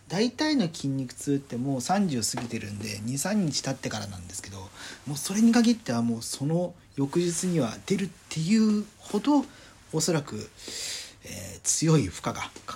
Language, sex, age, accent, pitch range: Japanese, male, 40-59, native, 105-170 Hz